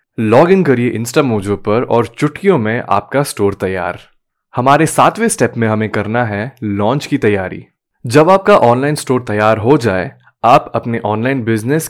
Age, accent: 10-29, native